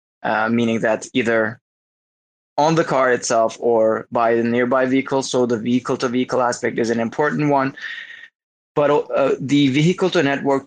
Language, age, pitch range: English, 20-39, 115-140 Hz